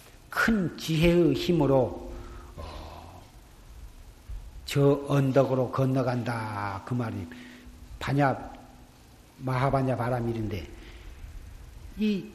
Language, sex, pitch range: Korean, male, 115-165 Hz